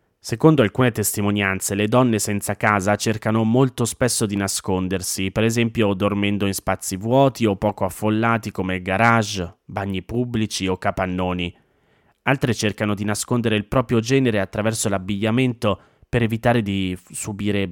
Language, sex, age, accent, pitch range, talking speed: Italian, male, 20-39, native, 95-115 Hz, 135 wpm